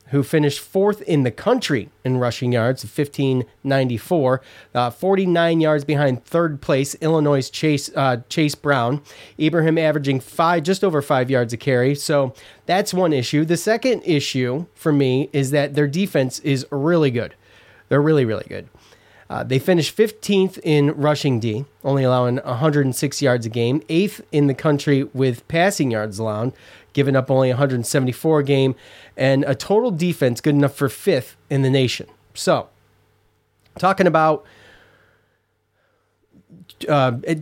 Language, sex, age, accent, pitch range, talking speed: English, male, 30-49, American, 130-160 Hz, 145 wpm